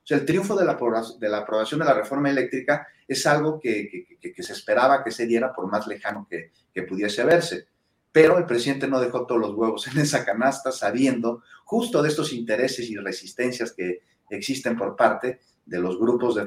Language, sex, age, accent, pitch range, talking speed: Spanish, male, 40-59, Mexican, 115-165 Hz, 210 wpm